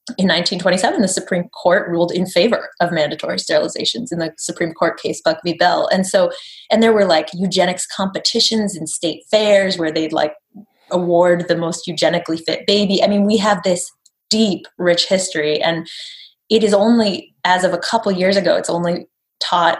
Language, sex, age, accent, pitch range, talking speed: English, female, 20-39, American, 175-220 Hz, 180 wpm